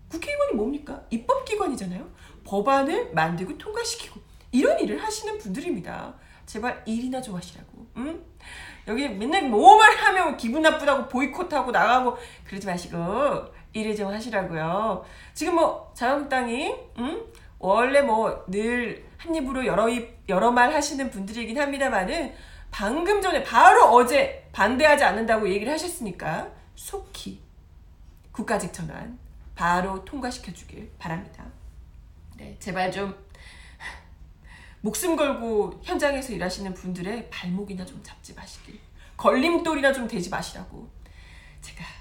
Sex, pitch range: female, 175-280 Hz